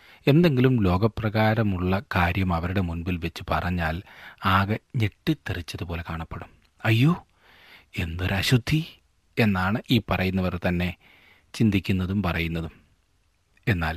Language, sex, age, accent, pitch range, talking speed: Malayalam, male, 30-49, native, 85-110 Hz, 80 wpm